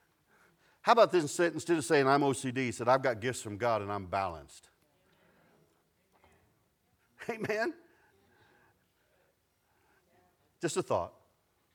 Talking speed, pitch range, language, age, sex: 105 wpm, 120-165 Hz, English, 50-69, male